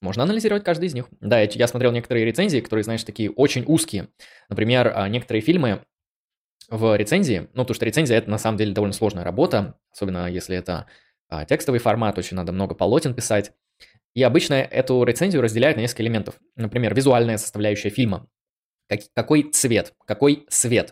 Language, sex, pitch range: Russian, male, 105-130 Hz